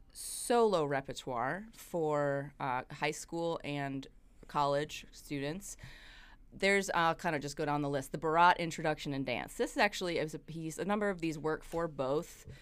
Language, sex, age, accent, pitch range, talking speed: English, female, 30-49, American, 140-175 Hz, 170 wpm